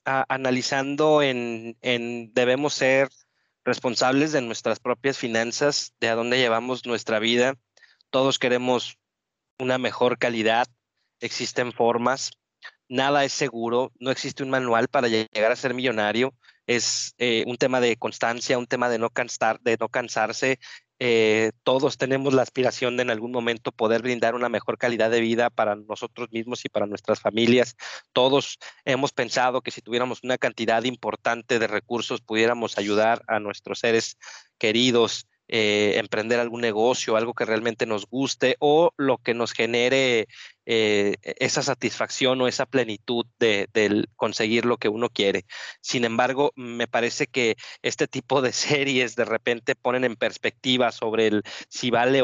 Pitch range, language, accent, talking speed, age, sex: 115-130 Hz, Spanish, Mexican, 155 wpm, 30-49, male